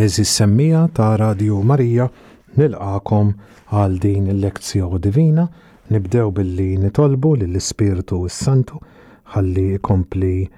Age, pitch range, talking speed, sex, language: 40-59, 95-125 Hz, 90 wpm, male, English